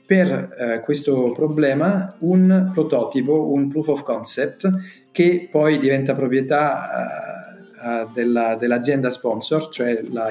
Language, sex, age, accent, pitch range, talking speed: Italian, male, 40-59, native, 120-150 Hz, 110 wpm